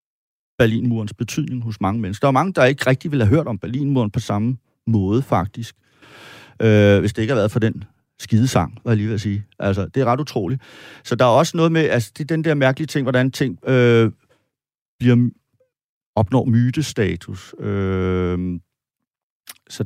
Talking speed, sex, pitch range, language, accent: 180 wpm, male, 105-130 Hz, Danish, native